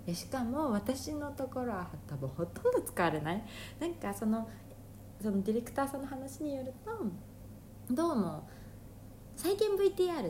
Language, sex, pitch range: Japanese, female, 155-250 Hz